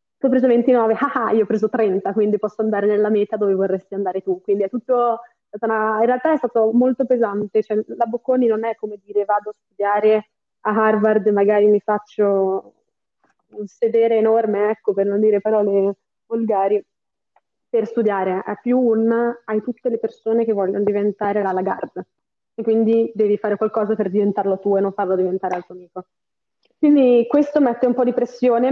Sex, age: female, 20-39